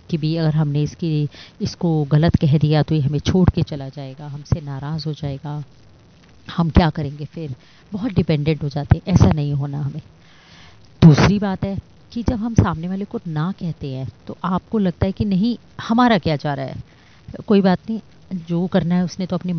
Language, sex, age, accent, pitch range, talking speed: Hindi, female, 30-49, native, 145-175 Hz, 200 wpm